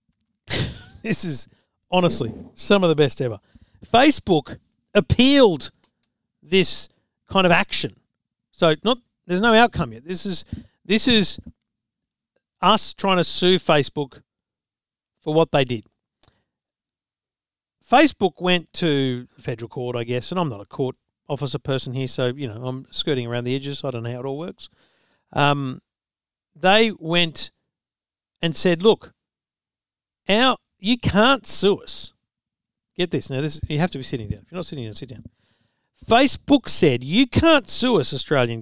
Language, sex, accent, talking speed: English, male, Australian, 150 wpm